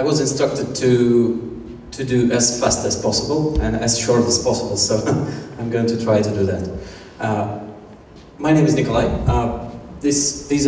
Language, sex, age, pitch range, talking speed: Russian, male, 30-49, 105-135 Hz, 175 wpm